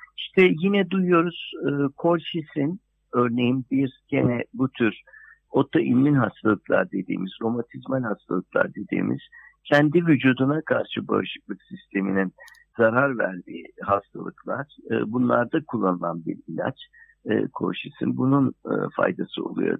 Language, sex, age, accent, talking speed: Turkish, male, 60-79, native, 105 wpm